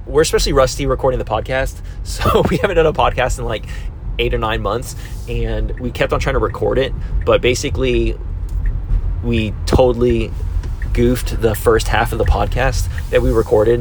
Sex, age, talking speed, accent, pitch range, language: male, 20-39, 175 wpm, American, 90-125 Hz, English